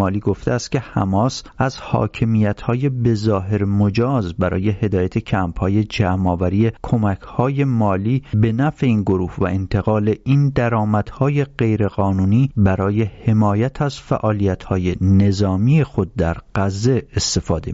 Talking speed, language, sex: 120 wpm, English, male